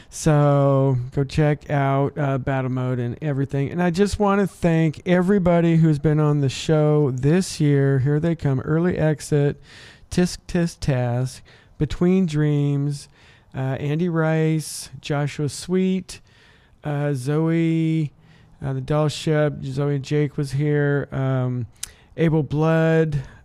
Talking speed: 135 wpm